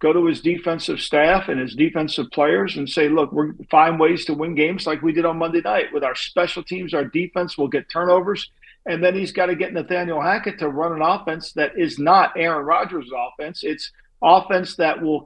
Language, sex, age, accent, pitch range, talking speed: English, male, 50-69, American, 155-185 Hz, 215 wpm